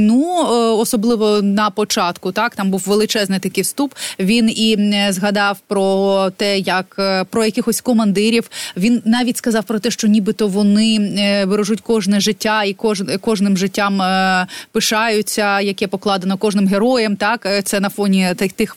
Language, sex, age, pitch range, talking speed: Ukrainian, female, 20-39, 205-260 Hz, 140 wpm